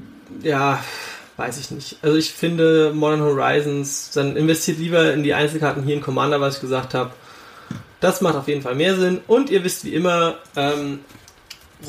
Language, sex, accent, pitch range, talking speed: German, male, German, 140-185 Hz, 175 wpm